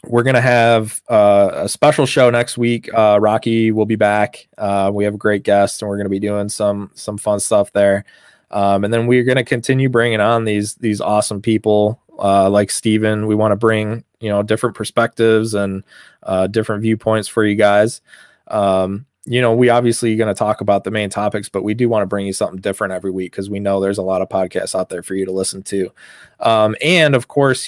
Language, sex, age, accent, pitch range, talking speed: English, male, 20-39, American, 100-120 Hz, 220 wpm